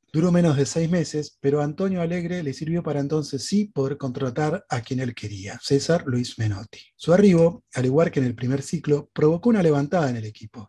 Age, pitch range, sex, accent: 30-49, 125-160 Hz, male, Argentinian